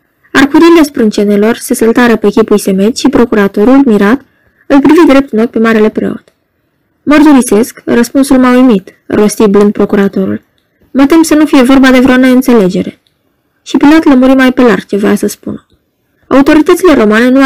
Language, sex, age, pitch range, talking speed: Romanian, female, 20-39, 205-265 Hz, 155 wpm